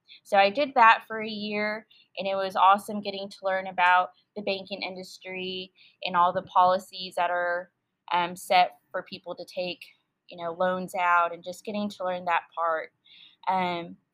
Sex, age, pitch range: female, 20-39, 175-200 Hz